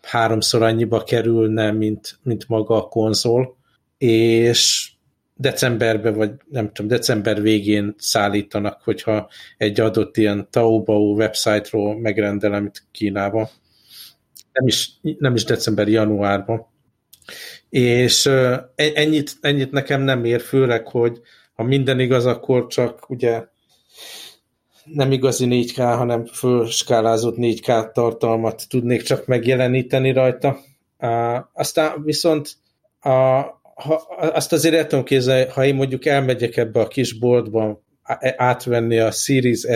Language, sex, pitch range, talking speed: Hungarian, male, 110-130 Hz, 115 wpm